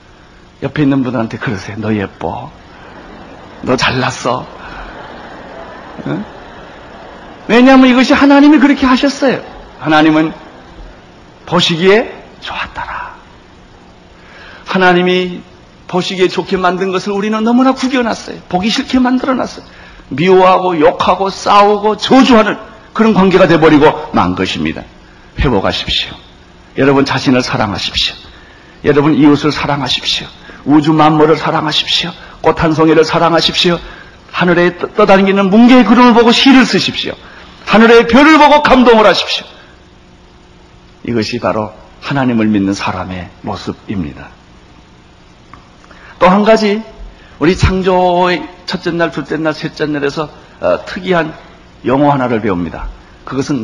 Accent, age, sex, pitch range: native, 60-79, male, 125-205 Hz